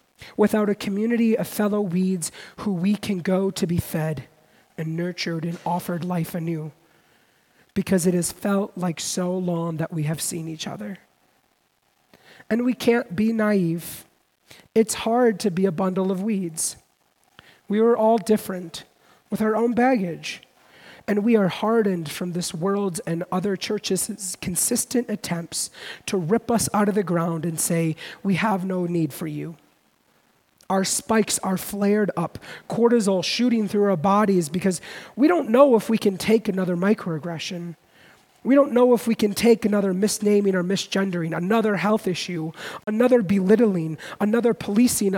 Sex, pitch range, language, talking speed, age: male, 175-220 Hz, English, 155 wpm, 40-59